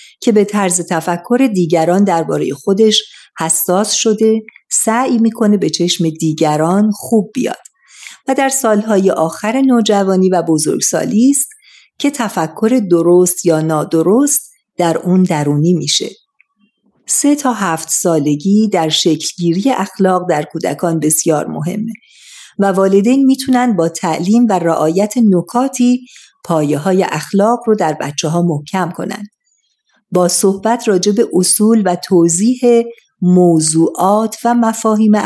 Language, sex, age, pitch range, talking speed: Persian, female, 50-69, 170-225 Hz, 120 wpm